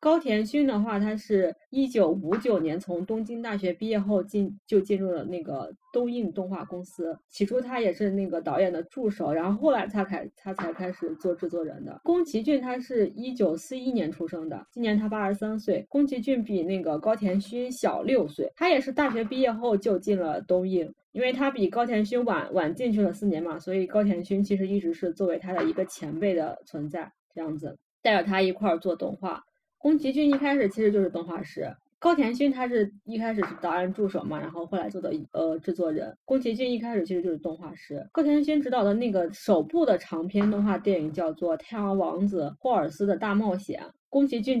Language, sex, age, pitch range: Chinese, female, 20-39, 180-245 Hz